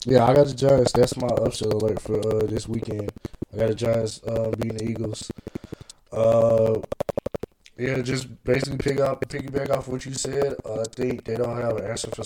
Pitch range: 110-125 Hz